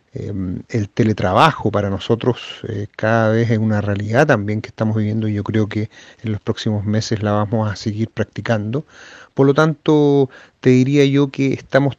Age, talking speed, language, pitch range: 40-59, 175 wpm, Spanish, 110-140 Hz